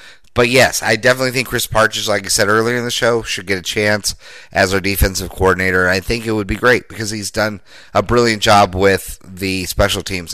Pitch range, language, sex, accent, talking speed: 95-125 Hz, English, male, American, 220 wpm